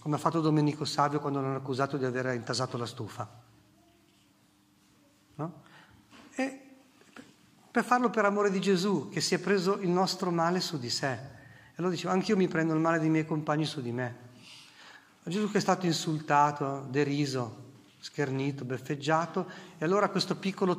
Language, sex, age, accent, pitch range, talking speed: Italian, male, 40-59, native, 140-190 Hz, 165 wpm